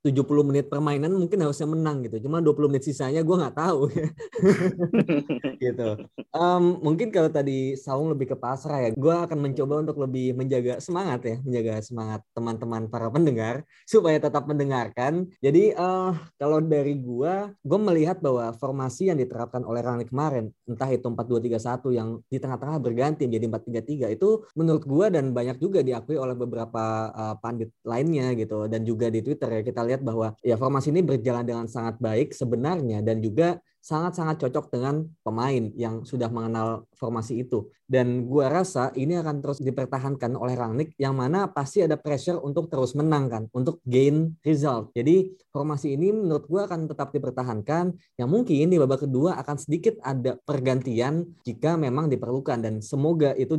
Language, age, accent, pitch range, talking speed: Indonesian, 20-39, native, 120-155 Hz, 165 wpm